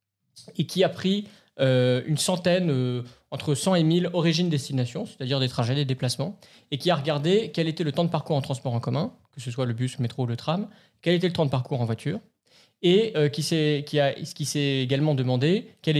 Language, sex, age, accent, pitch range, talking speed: French, male, 20-39, French, 135-180 Hz, 220 wpm